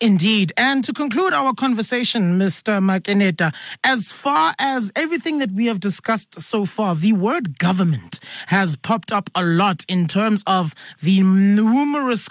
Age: 30-49